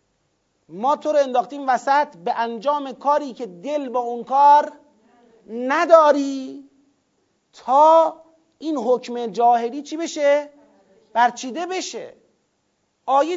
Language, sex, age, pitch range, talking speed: Persian, male, 40-59, 230-315 Hz, 105 wpm